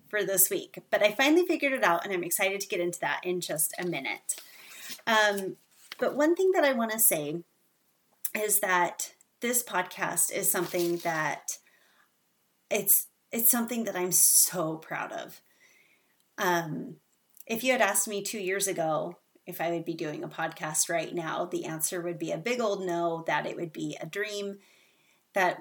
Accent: American